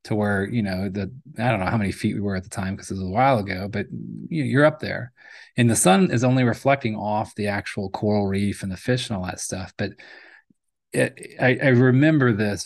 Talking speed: 245 wpm